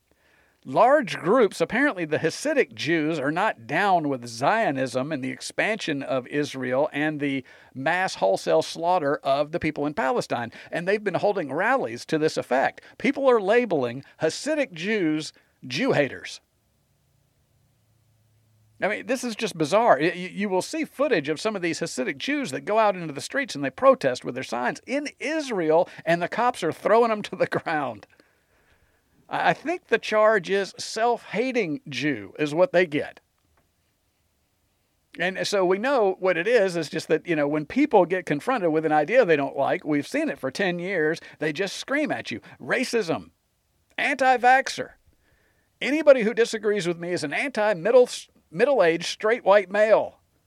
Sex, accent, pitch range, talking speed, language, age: male, American, 150-225 Hz, 160 wpm, English, 50-69